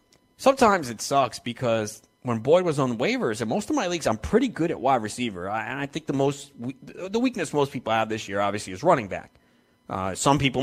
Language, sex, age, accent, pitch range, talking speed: English, male, 30-49, American, 110-145 Hz, 225 wpm